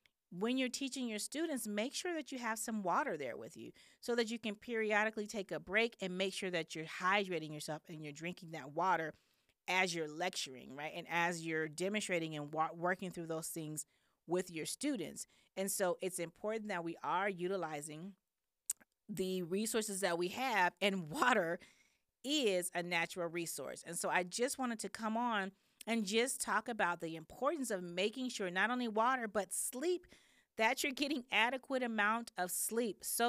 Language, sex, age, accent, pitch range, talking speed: English, female, 40-59, American, 170-230 Hz, 180 wpm